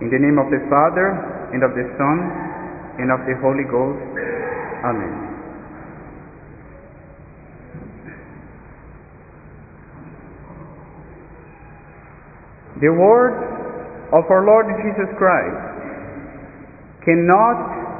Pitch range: 155-235 Hz